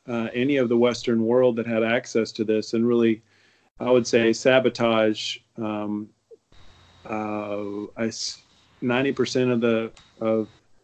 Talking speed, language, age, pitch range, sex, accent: 125 wpm, English, 40-59, 115-130 Hz, male, American